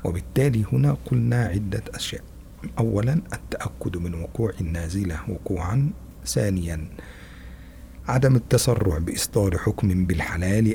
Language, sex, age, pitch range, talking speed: Indonesian, male, 50-69, 85-105 Hz, 95 wpm